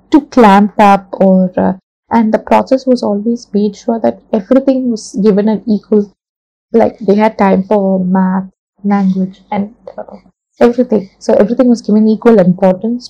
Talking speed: 155 wpm